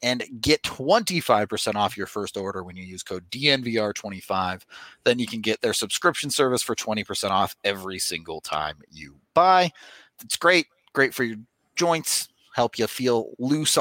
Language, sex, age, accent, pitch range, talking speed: English, male, 30-49, American, 110-140 Hz, 160 wpm